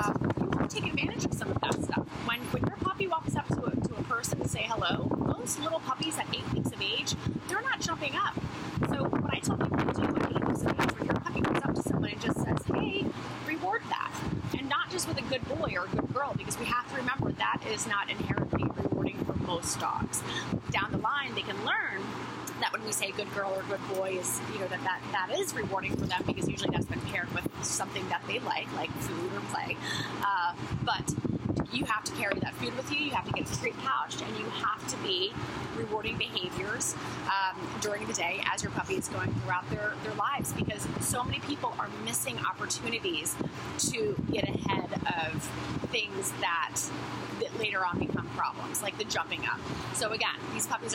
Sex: female